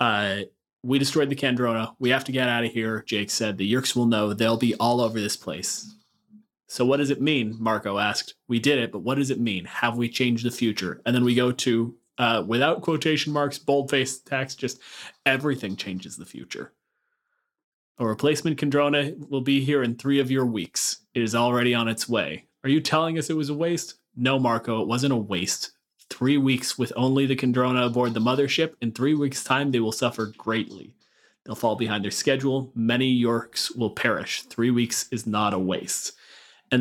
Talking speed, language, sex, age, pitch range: 200 wpm, English, male, 30-49, 110-135 Hz